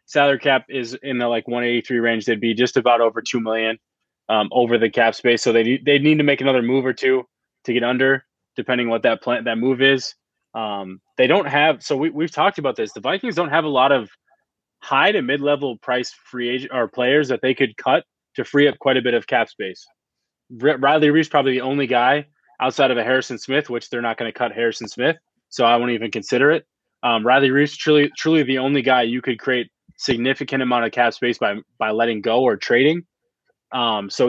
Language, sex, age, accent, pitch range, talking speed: English, male, 20-39, American, 120-135 Hz, 220 wpm